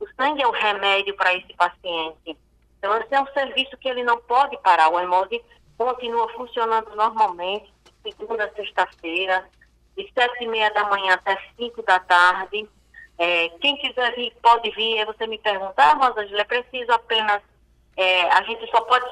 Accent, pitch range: Brazilian, 195-240 Hz